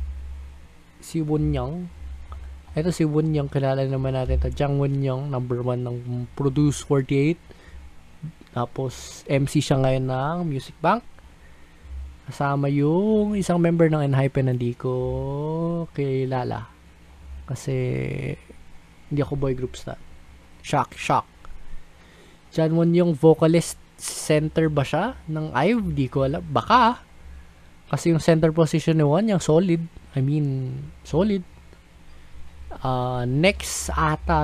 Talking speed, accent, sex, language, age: 115 wpm, native, male, Filipino, 20-39